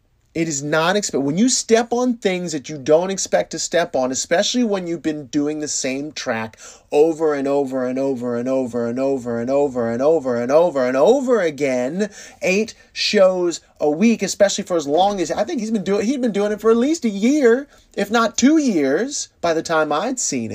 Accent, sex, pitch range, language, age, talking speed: American, male, 140-210 Hz, English, 30-49, 220 wpm